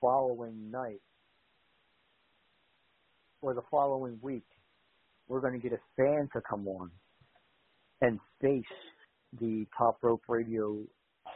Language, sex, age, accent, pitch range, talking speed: English, male, 50-69, American, 105-125 Hz, 110 wpm